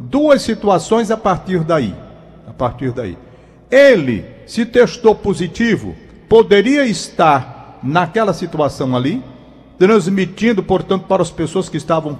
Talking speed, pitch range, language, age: 120 wpm, 190-250 Hz, Portuguese, 60-79